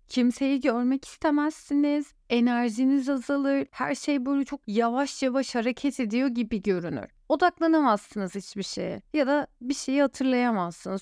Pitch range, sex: 220-280 Hz, female